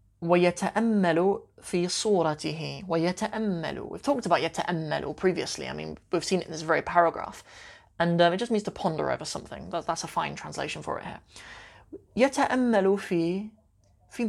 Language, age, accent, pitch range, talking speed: English, 20-39, British, 165-200 Hz, 155 wpm